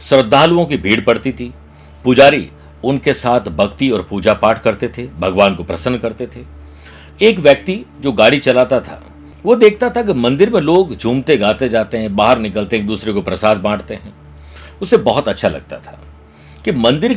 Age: 60-79